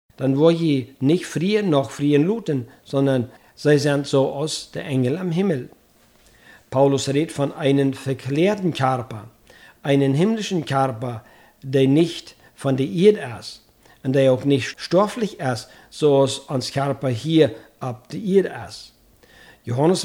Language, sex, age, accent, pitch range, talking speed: German, male, 50-69, German, 135-170 Hz, 145 wpm